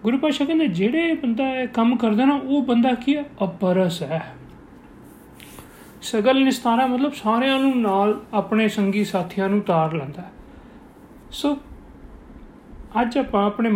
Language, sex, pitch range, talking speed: Punjabi, male, 200-265 Hz, 140 wpm